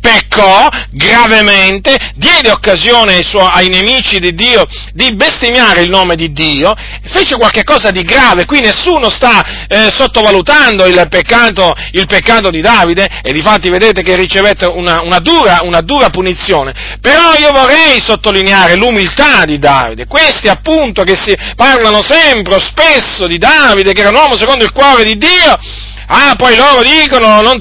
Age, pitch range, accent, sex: 40-59, 195-275 Hz, native, male